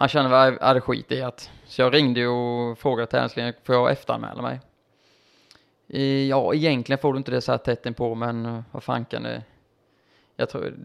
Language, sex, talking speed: Swedish, male, 185 wpm